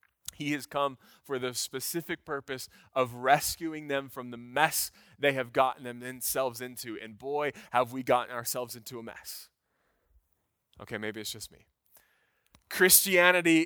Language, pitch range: English, 120-170 Hz